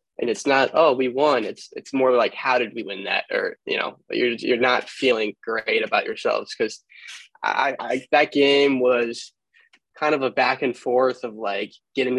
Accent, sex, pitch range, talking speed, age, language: American, male, 120-140 Hz, 195 wpm, 10-29, English